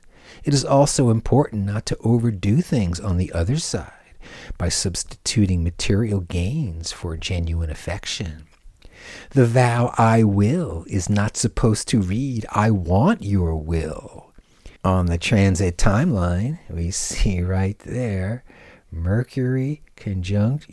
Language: English